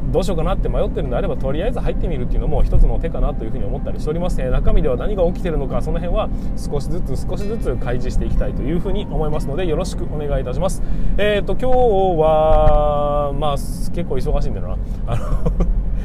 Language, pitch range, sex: Japanese, 130-170 Hz, male